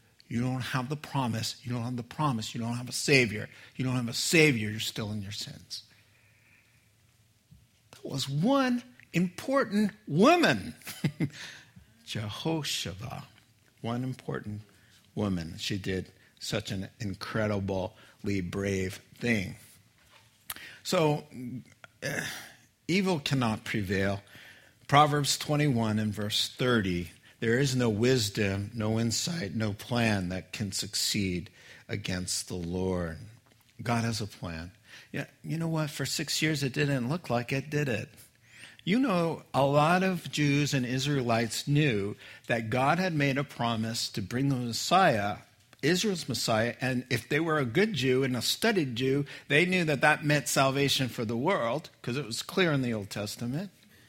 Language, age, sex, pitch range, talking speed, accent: English, 50-69, male, 110-145 Hz, 145 wpm, American